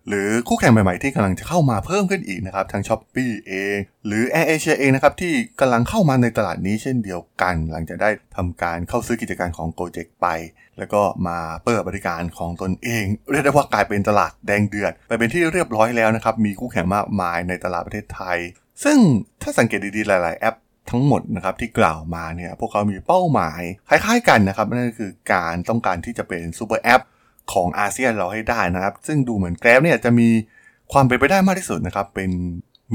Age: 20-39